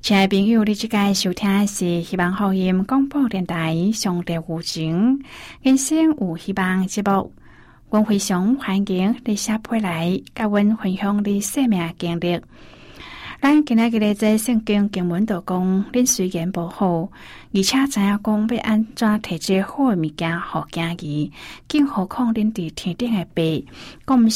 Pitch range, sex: 170-215 Hz, female